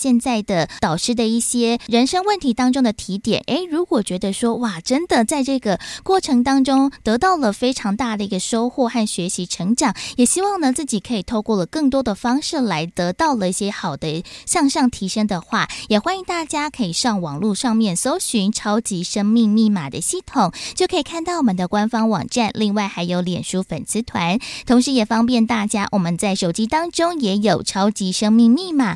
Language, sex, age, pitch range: Chinese, female, 20-39, 195-260 Hz